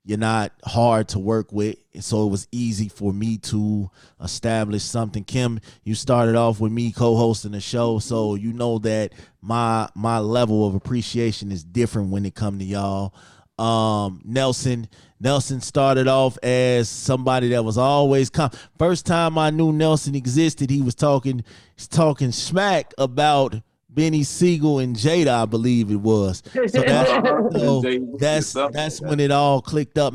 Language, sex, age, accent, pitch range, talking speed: English, male, 30-49, American, 105-135 Hz, 165 wpm